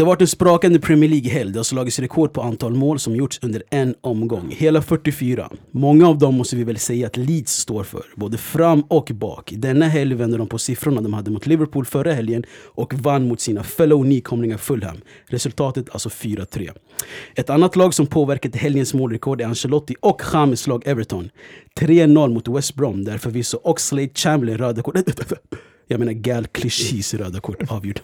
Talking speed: 185 wpm